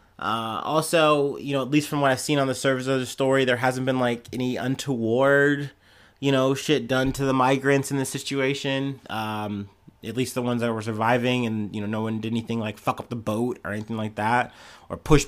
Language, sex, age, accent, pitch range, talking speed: English, male, 30-49, American, 110-135 Hz, 230 wpm